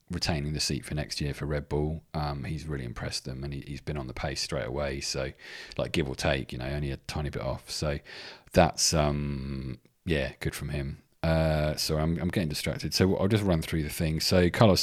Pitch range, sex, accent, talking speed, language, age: 75-90 Hz, male, British, 230 wpm, English, 30-49